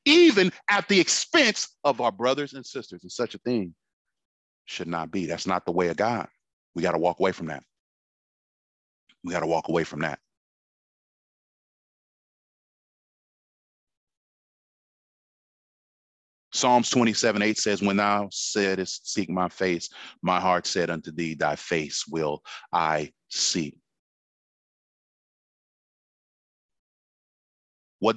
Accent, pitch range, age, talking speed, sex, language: American, 85-110 Hz, 40-59, 120 wpm, male, English